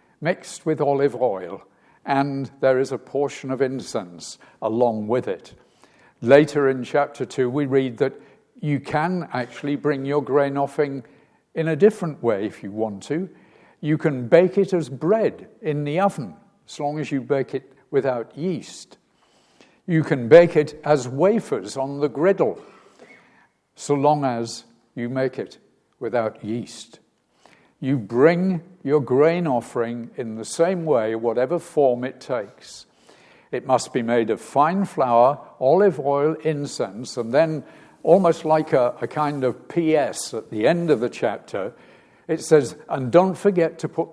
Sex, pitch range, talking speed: male, 130-165 Hz, 160 wpm